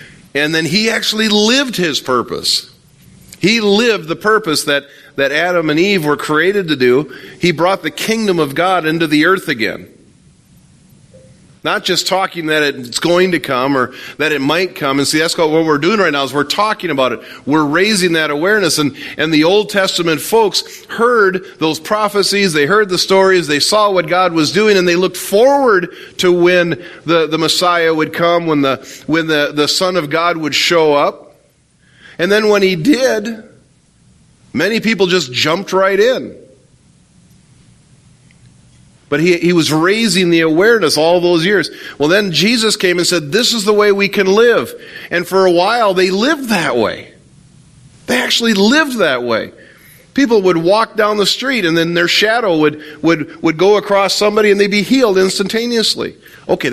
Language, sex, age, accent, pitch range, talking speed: English, male, 40-59, American, 155-205 Hz, 180 wpm